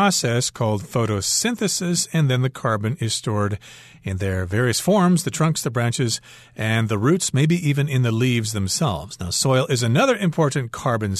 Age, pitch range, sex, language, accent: 40-59, 110-155 Hz, male, Chinese, American